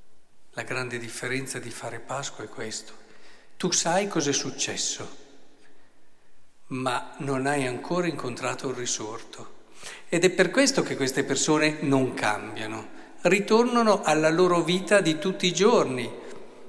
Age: 50-69